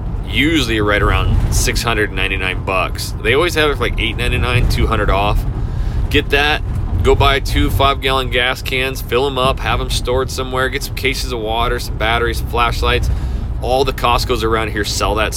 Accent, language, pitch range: American, English, 100-130 Hz